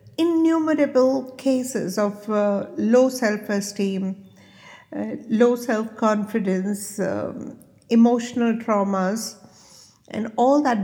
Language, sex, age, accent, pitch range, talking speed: English, female, 60-79, Indian, 190-230 Hz, 70 wpm